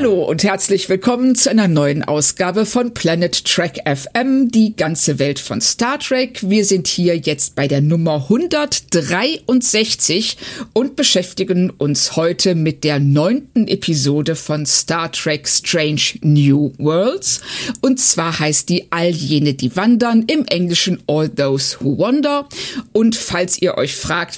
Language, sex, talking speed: German, female, 145 wpm